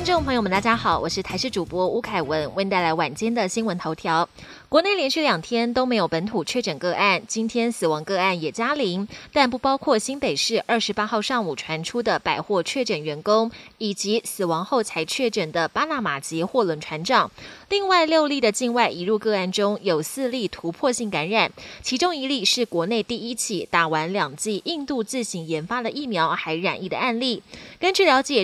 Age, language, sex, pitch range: 20-39, Chinese, female, 180-250 Hz